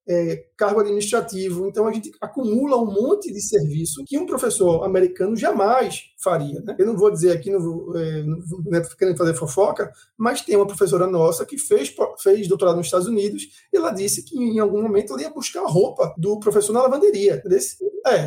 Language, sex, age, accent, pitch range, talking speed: Portuguese, male, 20-39, Brazilian, 175-225 Hz, 205 wpm